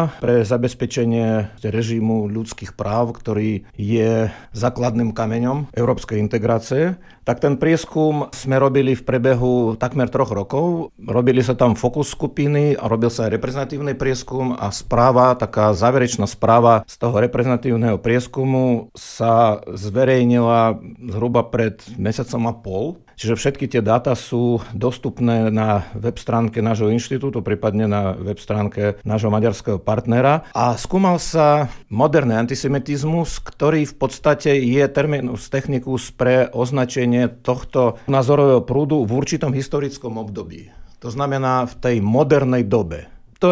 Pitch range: 110-135 Hz